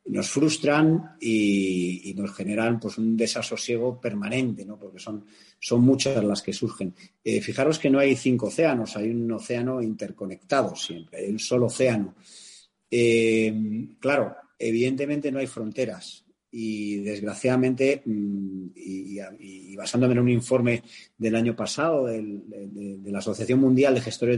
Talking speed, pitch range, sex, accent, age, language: 140 wpm, 105-130 Hz, male, Spanish, 40-59, Spanish